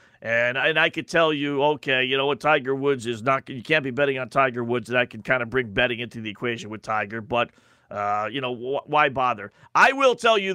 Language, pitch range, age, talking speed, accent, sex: English, 120-170 Hz, 40-59, 255 wpm, American, male